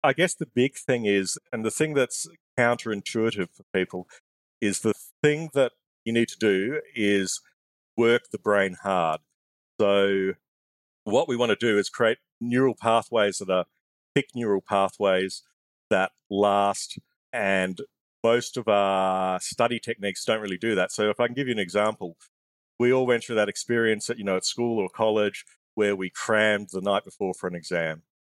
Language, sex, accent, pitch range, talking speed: English, male, Australian, 95-115 Hz, 170 wpm